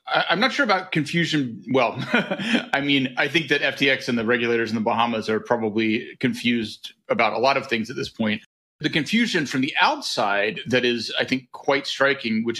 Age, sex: 30-49, male